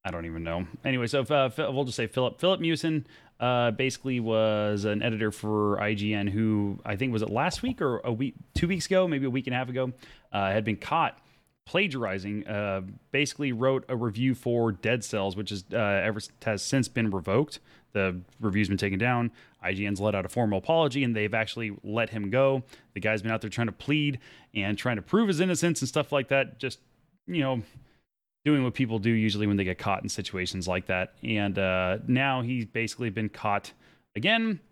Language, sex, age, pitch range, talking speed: English, male, 30-49, 105-135 Hz, 210 wpm